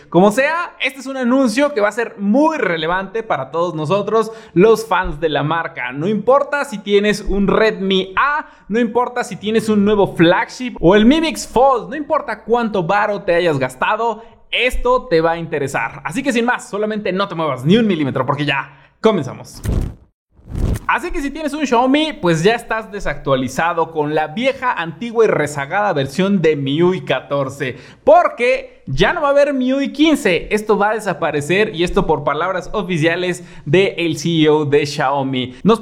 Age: 20-39